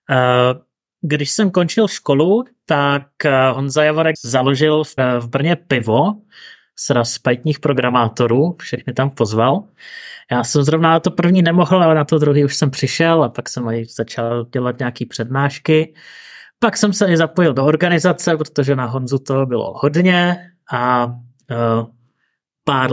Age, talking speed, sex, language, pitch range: 30-49, 140 wpm, male, Czech, 125-160 Hz